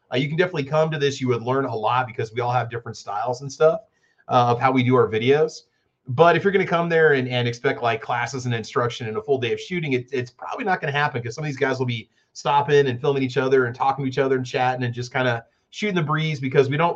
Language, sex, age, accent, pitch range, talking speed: English, male, 30-49, American, 125-155 Hz, 295 wpm